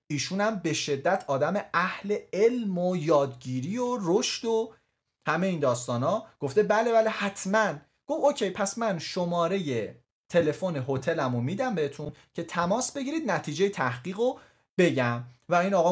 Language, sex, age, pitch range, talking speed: Persian, male, 30-49, 135-210 Hz, 145 wpm